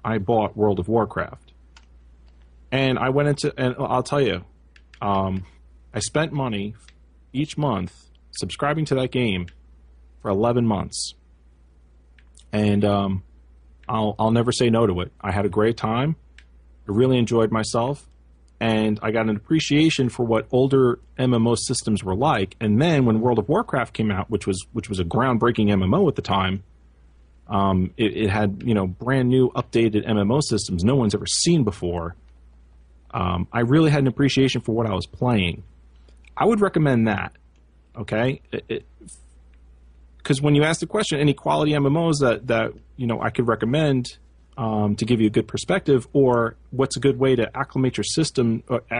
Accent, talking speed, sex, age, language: American, 170 wpm, male, 30-49, English